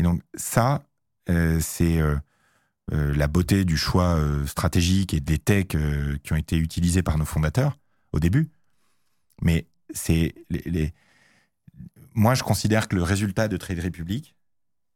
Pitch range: 85-120 Hz